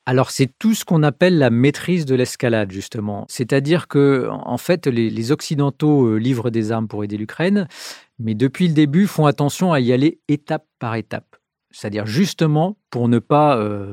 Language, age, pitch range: French, 40-59, 115-150 Hz